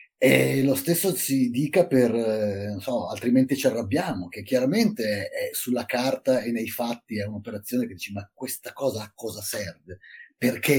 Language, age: Italian, 30-49